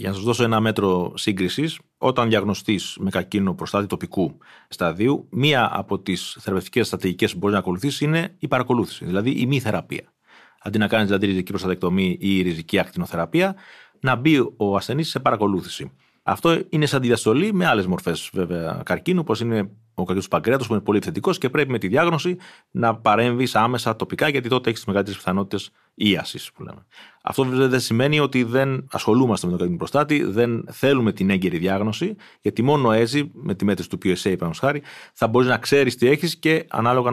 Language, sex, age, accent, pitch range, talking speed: Greek, male, 30-49, native, 95-135 Hz, 185 wpm